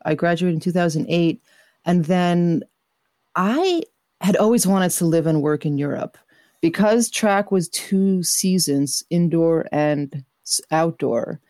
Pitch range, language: 150-190 Hz, English